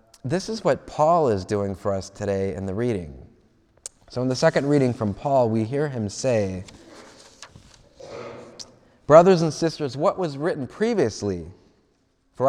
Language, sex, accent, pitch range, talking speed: English, male, American, 105-145 Hz, 150 wpm